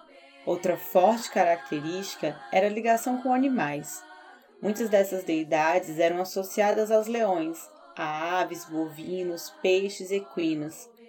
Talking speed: 115 wpm